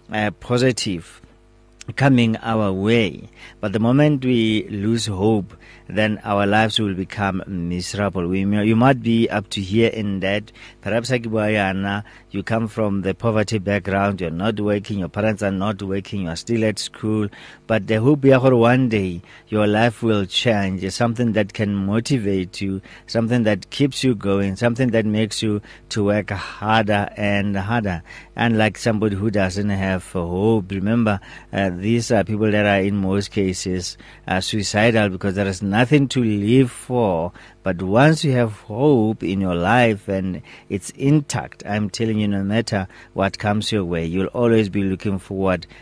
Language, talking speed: English, 165 wpm